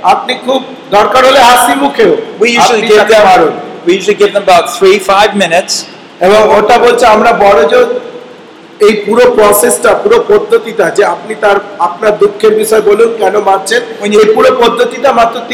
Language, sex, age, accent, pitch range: Bengali, male, 50-69, native, 200-245 Hz